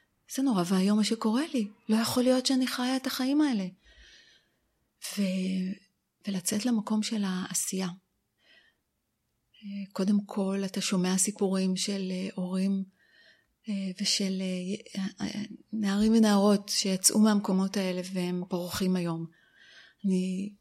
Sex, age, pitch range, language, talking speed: female, 30-49, 185-220 Hz, Hebrew, 105 wpm